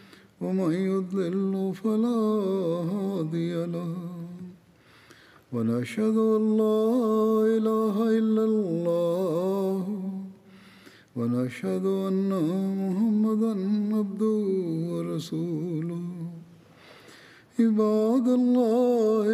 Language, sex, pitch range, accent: German, male, 170-215 Hz, Indian